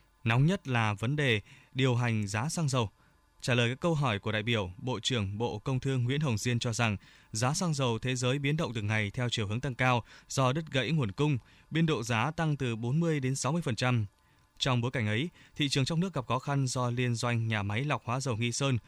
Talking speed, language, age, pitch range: 240 wpm, Vietnamese, 20-39, 115-140 Hz